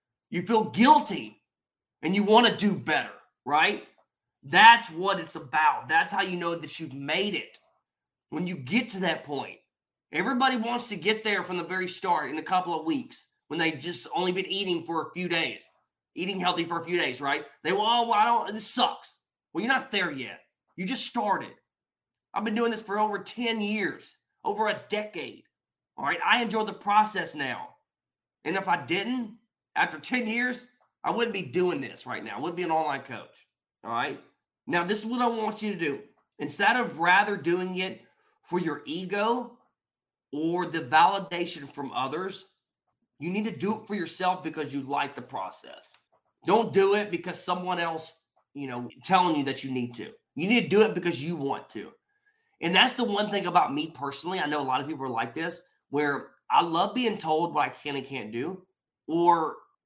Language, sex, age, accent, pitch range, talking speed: English, male, 20-39, American, 160-215 Hz, 200 wpm